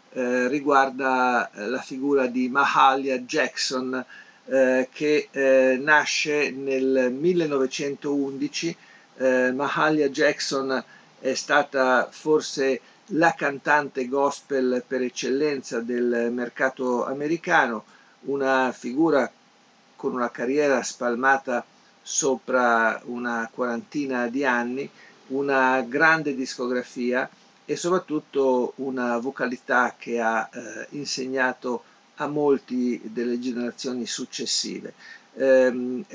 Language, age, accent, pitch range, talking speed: Italian, 50-69, native, 125-140 Hz, 90 wpm